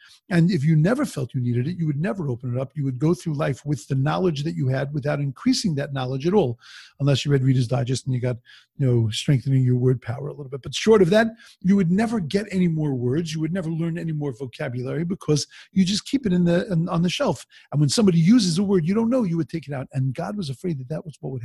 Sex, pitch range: male, 135-180 Hz